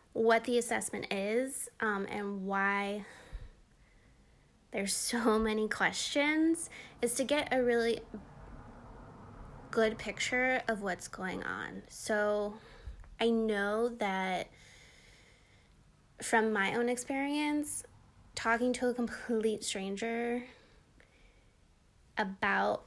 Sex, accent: female, American